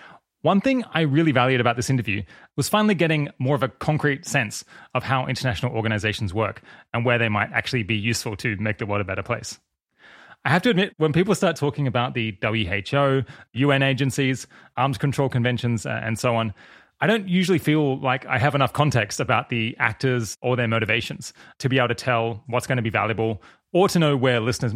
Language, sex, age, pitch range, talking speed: English, male, 20-39, 115-145 Hz, 205 wpm